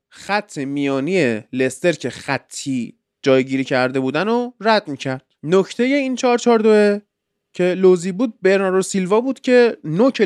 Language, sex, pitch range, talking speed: Persian, male, 155-215 Hz, 135 wpm